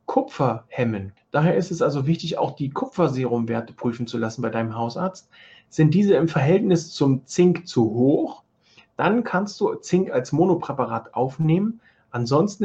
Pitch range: 135-180 Hz